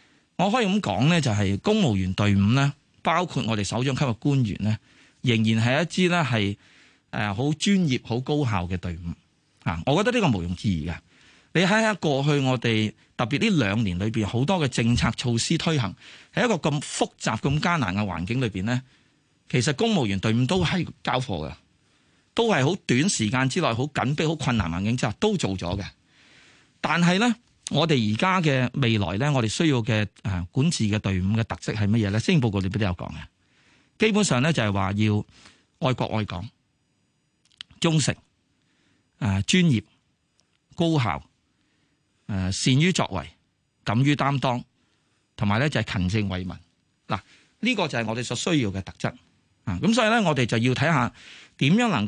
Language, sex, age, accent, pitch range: Chinese, male, 30-49, native, 100-150 Hz